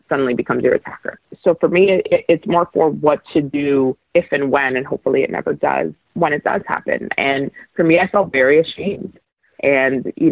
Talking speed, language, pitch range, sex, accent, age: 205 wpm, English, 140-185 Hz, female, American, 30-49